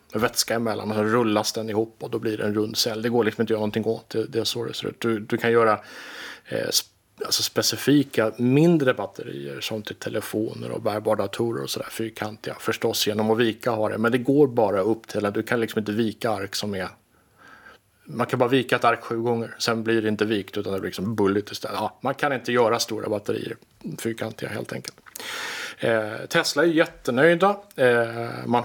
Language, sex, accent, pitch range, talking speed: Swedish, male, Norwegian, 110-125 Hz, 220 wpm